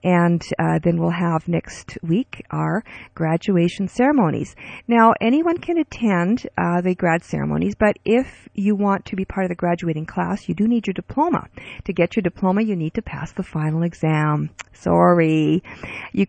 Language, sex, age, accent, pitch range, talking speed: English, female, 50-69, American, 170-225 Hz, 175 wpm